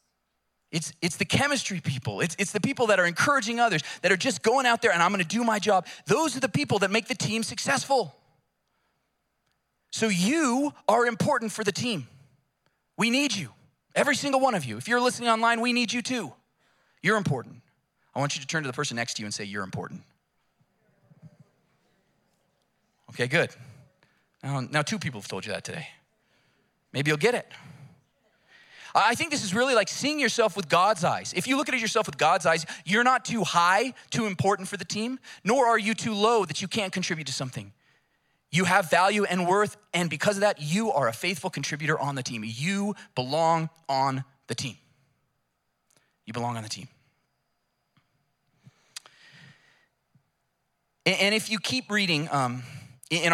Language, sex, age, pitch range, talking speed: English, male, 30-49, 140-220 Hz, 180 wpm